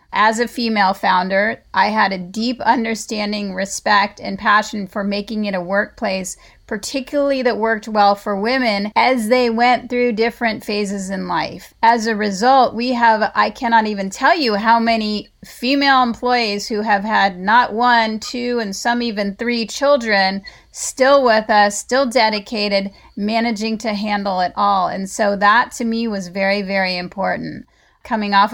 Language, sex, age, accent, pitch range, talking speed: English, female, 30-49, American, 200-235 Hz, 160 wpm